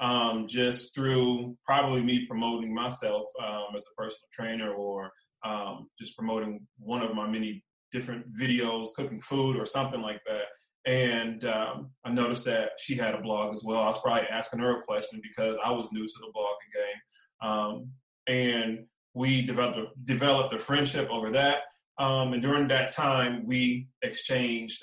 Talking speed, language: 170 wpm, English